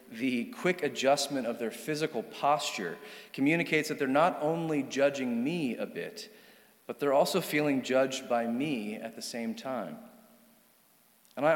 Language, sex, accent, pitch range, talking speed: English, male, American, 125-180 Hz, 150 wpm